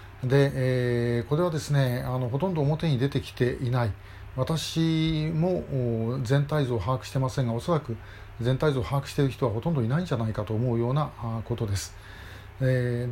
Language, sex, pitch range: Japanese, male, 115-150 Hz